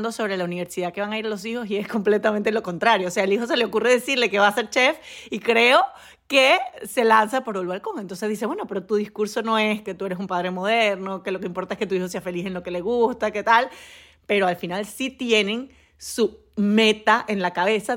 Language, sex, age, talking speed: Spanish, female, 30-49, 255 wpm